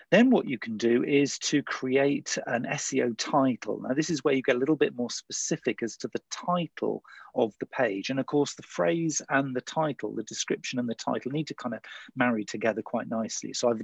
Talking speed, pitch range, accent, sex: 225 wpm, 120-150 Hz, British, male